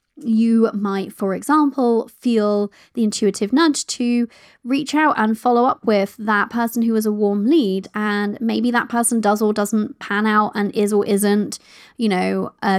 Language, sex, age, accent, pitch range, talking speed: English, female, 20-39, British, 205-240 Hz, 180 wpm